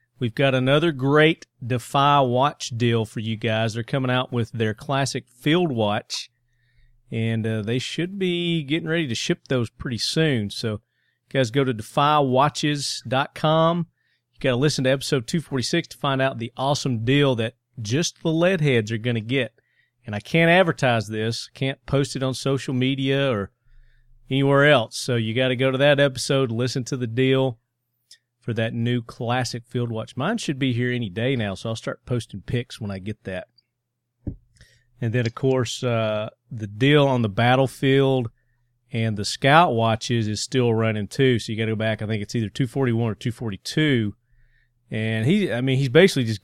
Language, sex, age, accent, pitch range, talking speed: English, male, 40-59, American, 115-140 Hz, 180 wpm